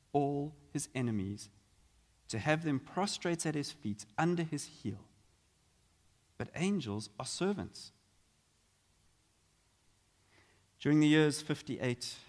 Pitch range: 100-130 Hz